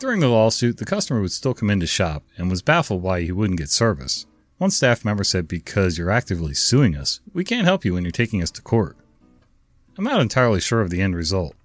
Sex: male